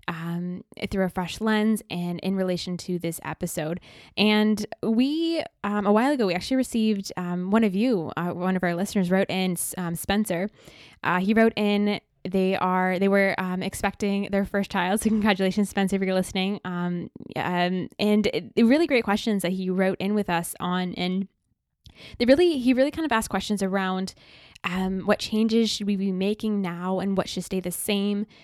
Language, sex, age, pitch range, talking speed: English, female, 10-29, 180-205 Hz, 190 wpm